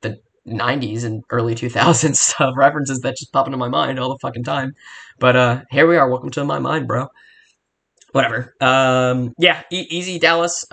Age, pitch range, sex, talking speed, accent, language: 10-29, 125-170 Hz, male, 185 wpm, American, English